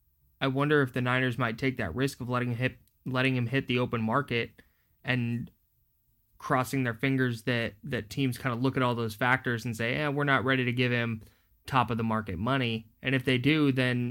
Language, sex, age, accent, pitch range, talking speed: English, male, 20-39, American, 110-130 Hz, 220 wpm